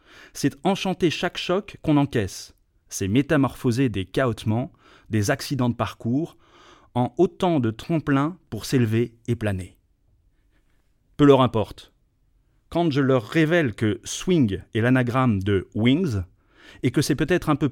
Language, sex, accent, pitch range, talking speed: French, male, French, 105-145 Hz, 150 wpm